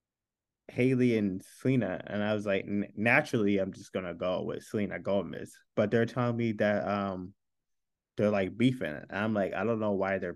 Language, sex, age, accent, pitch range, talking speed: English, male, 20-39, American, 95-120 Hz, 190 wpm